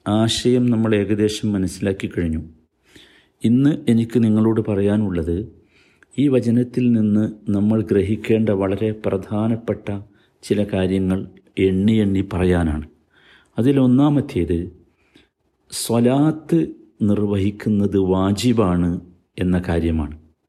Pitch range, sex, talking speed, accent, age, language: 100-165 Hz, male, 80 wpm, native, 50-69, Malayalam